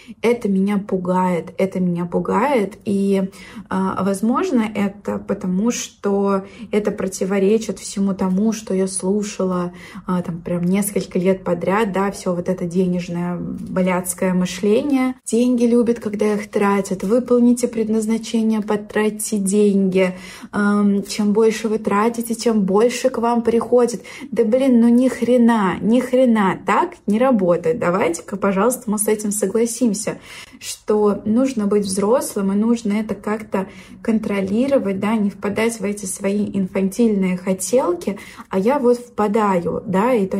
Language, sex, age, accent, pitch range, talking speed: Russian, female, 20-39, native, 195-235 Hz, 135 wpm